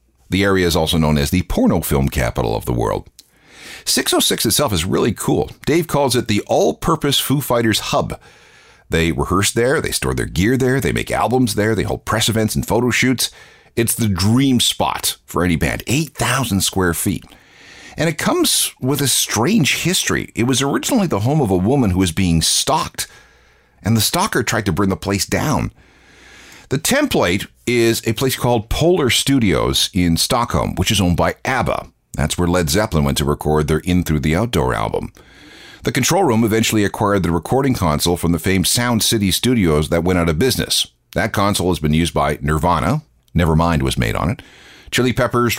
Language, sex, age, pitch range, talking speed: English, male, 50-69, 85-115 Hz, 190 wpm